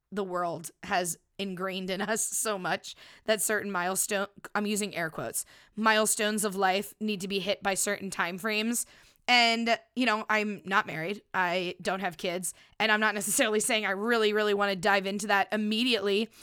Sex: female